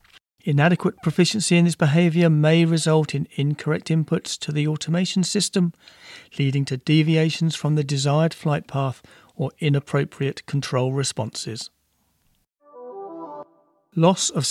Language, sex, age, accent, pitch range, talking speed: English, male, 40-59, British, 135-165 Hz, 115 wpm